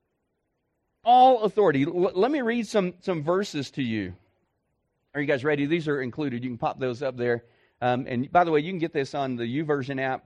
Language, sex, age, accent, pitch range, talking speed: English, male, 40-59, American, 125-165 Hz, 210 wpm